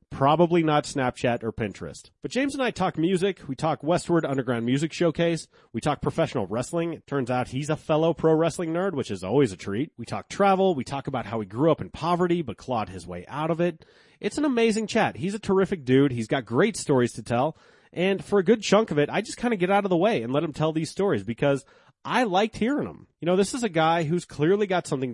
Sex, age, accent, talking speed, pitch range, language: male, 30-49, American, 250 wpm, 125-180 Hz, English